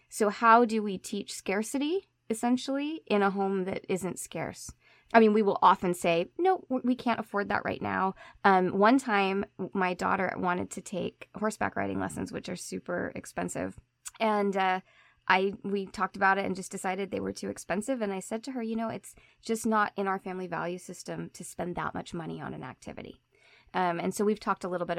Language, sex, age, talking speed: English, female, 20-39, 205 wpm